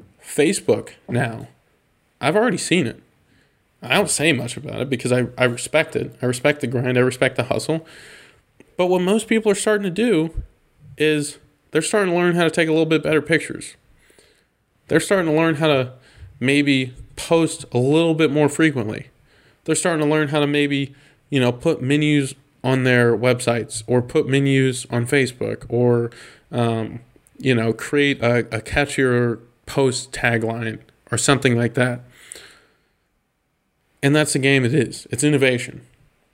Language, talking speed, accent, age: English, 165 wpm, American, 20-39